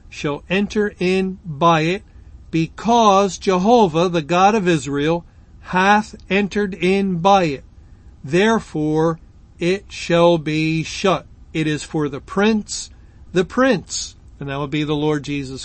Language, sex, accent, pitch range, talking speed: English, male, American, 155-205 Hz, 135 wpm